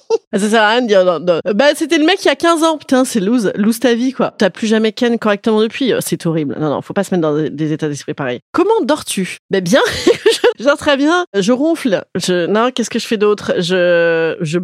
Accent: French